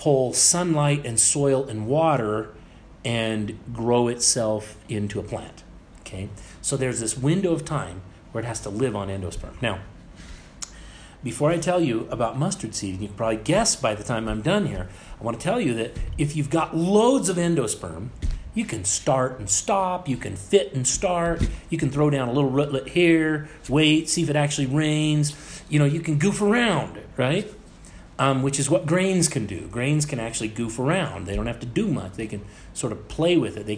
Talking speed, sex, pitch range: 205 wpm, male, 105-150 Hz